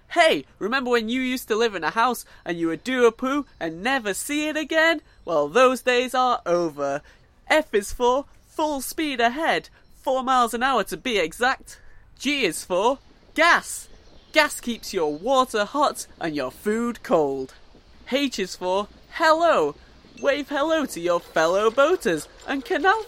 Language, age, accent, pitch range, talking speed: English, 30-49, British, 210-280 Hz, 165 wpm